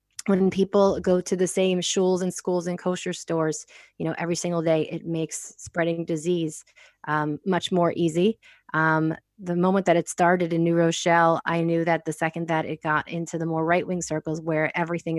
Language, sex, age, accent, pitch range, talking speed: English, female, 20-39, American, 160-180 Hz, 195 wpm